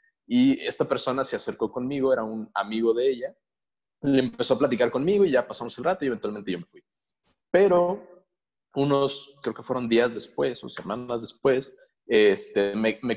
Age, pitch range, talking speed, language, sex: 30-49, 115-155 Hz, 180 wpm, Spanish, male